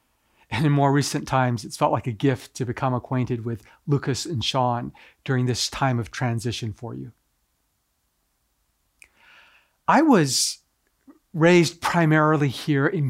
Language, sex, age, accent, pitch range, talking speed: English, male, 40-59, American, 130-165 Hz, 135 wpm